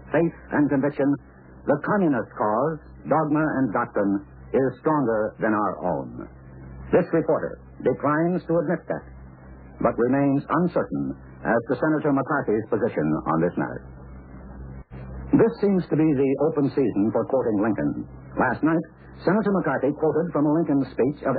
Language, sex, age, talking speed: English, male, 60-79, 140 wpm